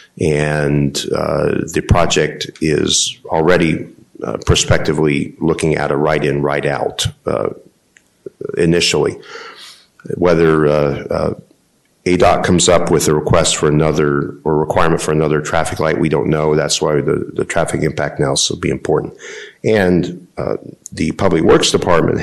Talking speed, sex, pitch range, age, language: 145 wpm, male, 75-90 Hz, 50-69, English